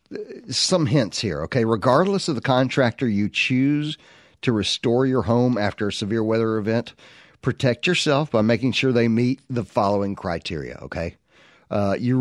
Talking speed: 155 wpm